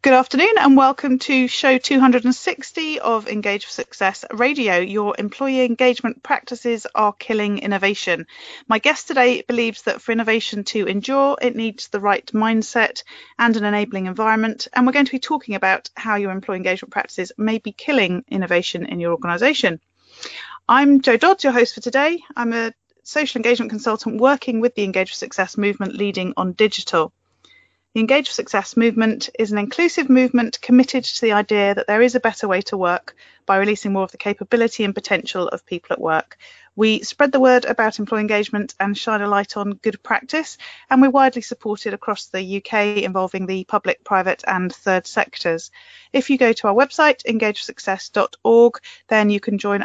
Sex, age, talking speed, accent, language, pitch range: female, 30-49, 180 wpm, British, English, 200-255 Hz